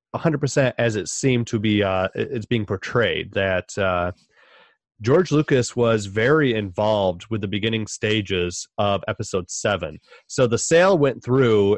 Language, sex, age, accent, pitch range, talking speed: English, male, 30-49, American, 105-125 Hz, 155 wpm